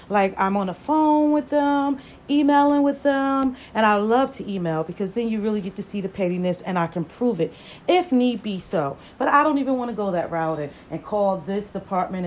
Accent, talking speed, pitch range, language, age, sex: American, 230 wpm, 190-245 Hz, English, 40-59, female